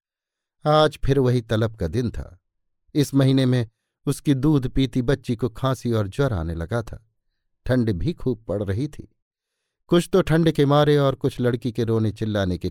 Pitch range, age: 105-145 Hz, 50-69